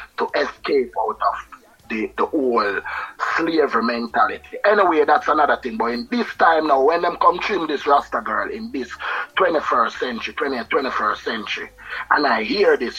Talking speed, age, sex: 165 wpm, 30-49, male